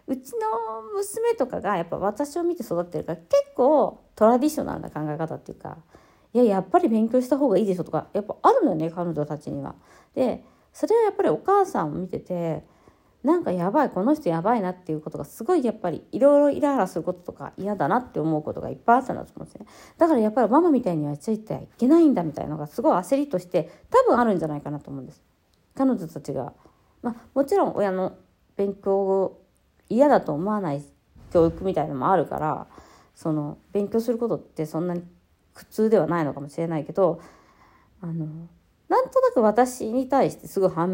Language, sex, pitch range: Japanese, female, 165-270 Hz